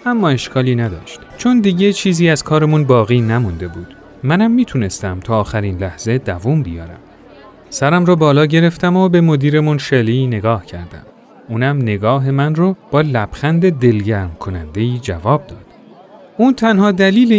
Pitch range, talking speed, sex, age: 115-180 Hz, 140 wpm, male, 30-49